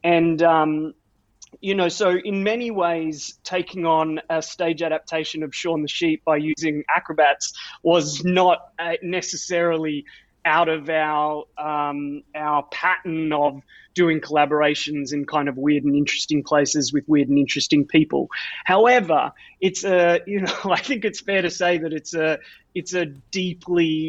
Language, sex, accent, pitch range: English, male, Australian, 155-180 Hz